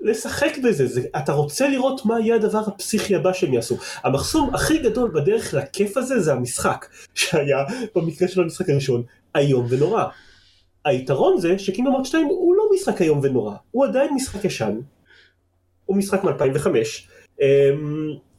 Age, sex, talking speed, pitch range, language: 30-49, male, 150 wpm, 125-190 Hz, Hebrew